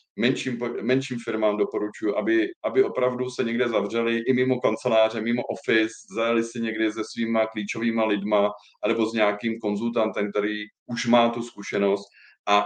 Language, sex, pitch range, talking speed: Slovak, male, 105-125 Hz, 150 wpm